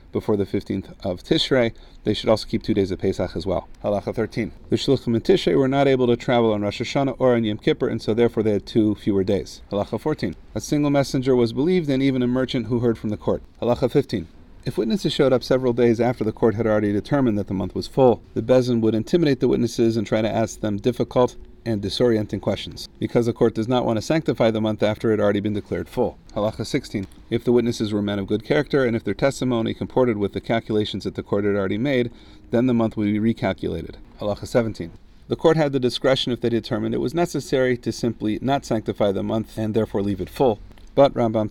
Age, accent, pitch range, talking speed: 40-59, American, 105-125 Hz, 235 wpm